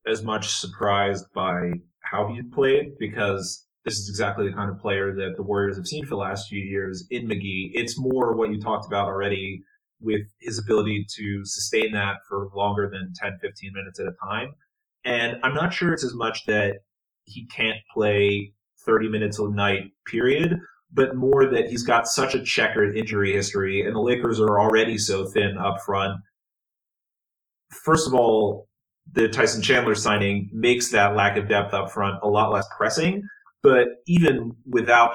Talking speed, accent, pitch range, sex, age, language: 180 wpm, American, 100-115 Hz, male, 30-49, English